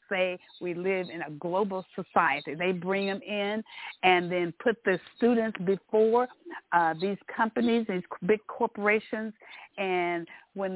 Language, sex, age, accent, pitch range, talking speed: English, female, 50-69, American, 170-200 Hz, 140 wpm